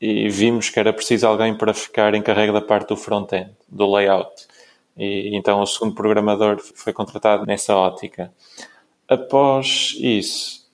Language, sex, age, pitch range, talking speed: Portuguese, male, 20-39, 105-125 Hz, 145 wpm